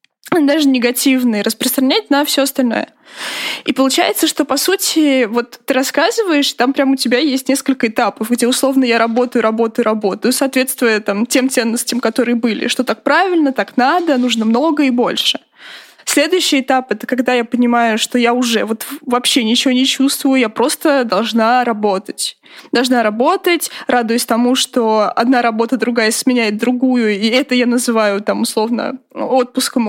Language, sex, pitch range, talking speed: Russian, female, 235-285 Hz, 155 wpm